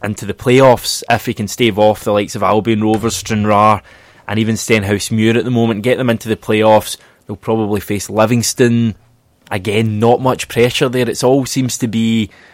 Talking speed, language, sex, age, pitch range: 190 wpm, English, male, 20-39, 110-125 Hz